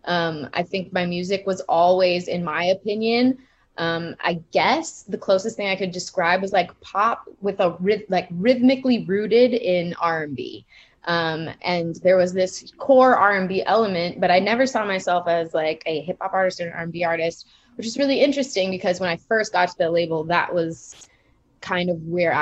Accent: American